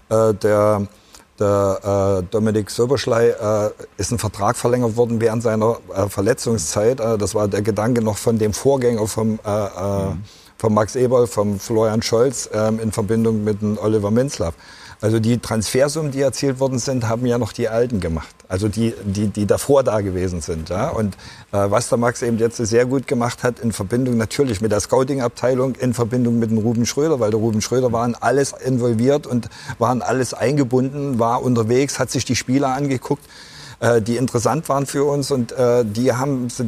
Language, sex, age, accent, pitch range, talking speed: German, male, 50-69, German, 115-135 Hz, 185 wpm